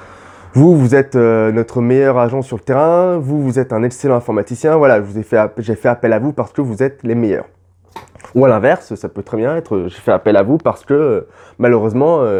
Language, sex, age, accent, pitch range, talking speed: French, male, 20-39, French, 120-170 Hz, 215 wpm